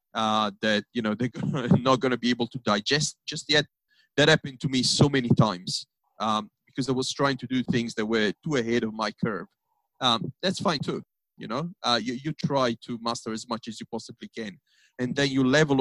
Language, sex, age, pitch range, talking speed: English, male, 30-49, 120-155 Hz, 220 wpm